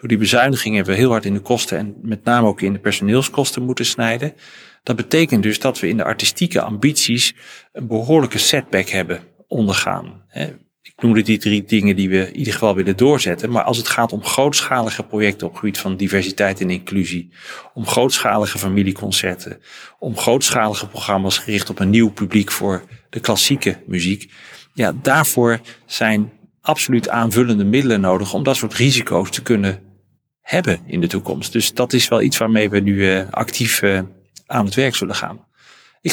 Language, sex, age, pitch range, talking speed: Dutch, male, 40-59, 100-125 Hz, 175 wpm